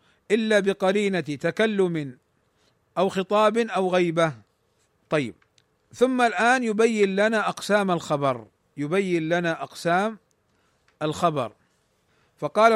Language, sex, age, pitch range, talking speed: Arabic, male, 50-69, 160-210 Hz, 90 wpm